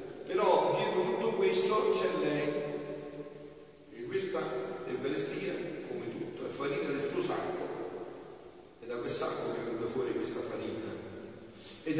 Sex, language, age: male, Italian, 40-59